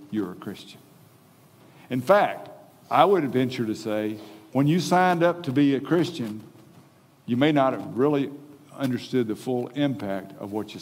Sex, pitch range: male, 135-185 Hz